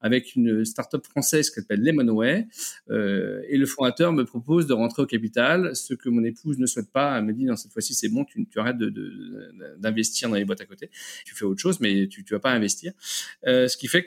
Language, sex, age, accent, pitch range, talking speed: French, male, 40-59, French, 120-160 Hz, 245 wpm